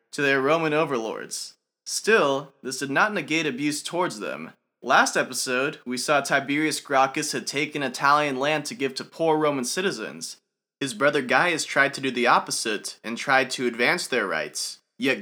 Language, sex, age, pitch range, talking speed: English, male, 20-39, 125-160 Hz, 170 wpm